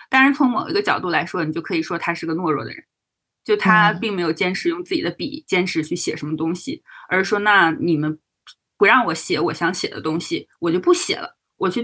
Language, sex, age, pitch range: Chinese, female, 20-39, 165-275 Hz